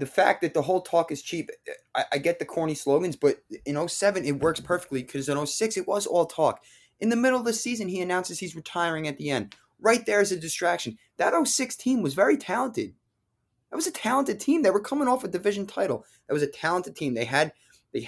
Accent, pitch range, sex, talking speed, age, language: American, 120-175 Hz, male, 235 wpm, 20-39, English